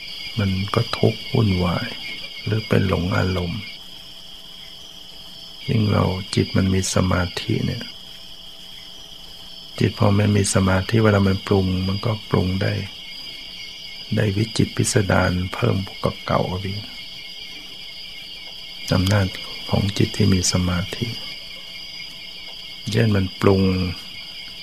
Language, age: Thai, 60-79